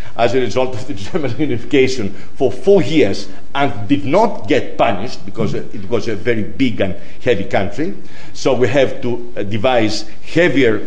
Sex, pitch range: male, 100-135 Hz